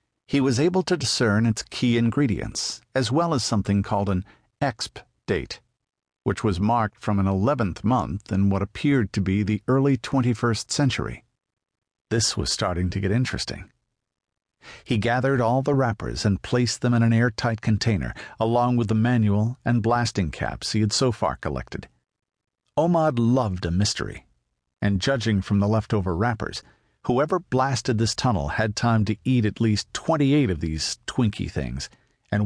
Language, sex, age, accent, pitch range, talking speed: English, male, 50-69, American, 100-125 Hz, 165 wpm